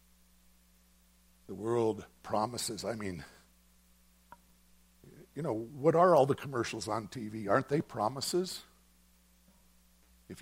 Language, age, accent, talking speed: English, 60-79, American, 105 wpm